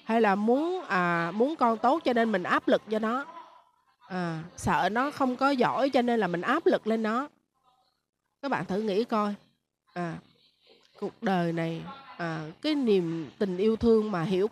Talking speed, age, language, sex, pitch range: 185 wpm, 20-39, Vietnamese, female, 190-270 Hz